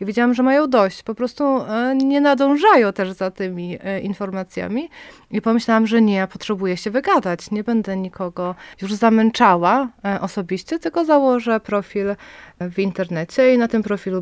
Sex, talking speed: female, 150 wpm